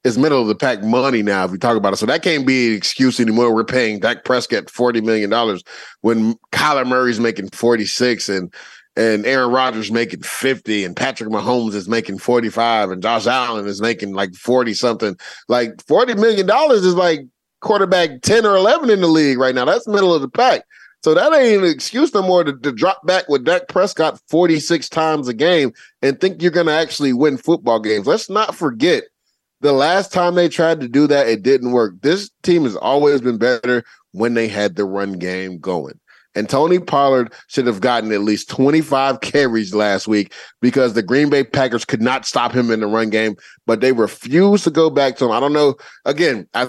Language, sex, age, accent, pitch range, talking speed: English, male, 30-49, American, 115-175 Hz, 215 wpm